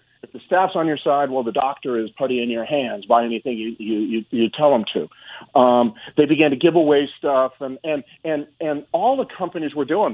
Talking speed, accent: 230 wpm, American